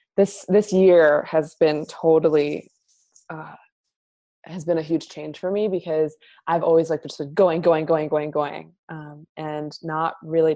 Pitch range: 160-190 Hz